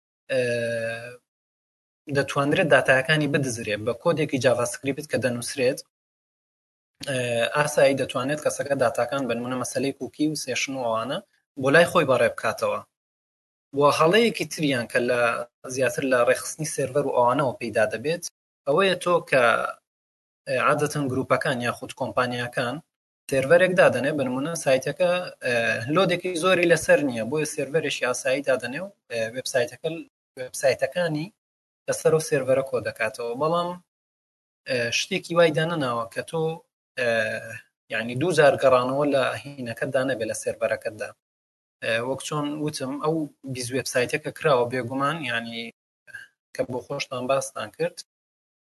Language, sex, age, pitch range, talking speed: Arabic, male, 20-39, 125-160 Hz, 120 wpm